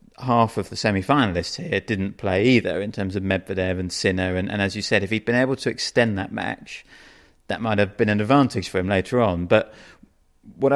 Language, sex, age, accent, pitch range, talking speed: English, male, 30-49, British, 95-115 Hz, 220 wpm